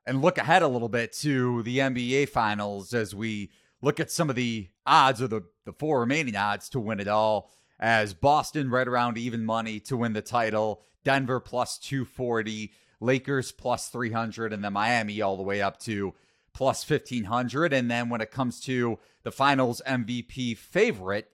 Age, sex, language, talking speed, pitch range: 30-49, male, English, 180 wpm, 115-155 Hz